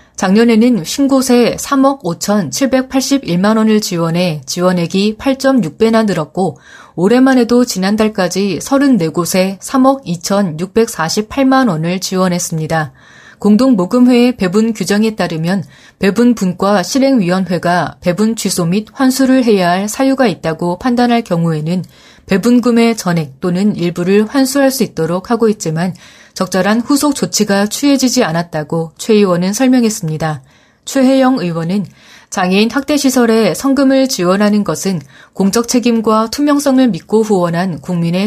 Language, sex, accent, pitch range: Korean, female, native, 175-240 Hz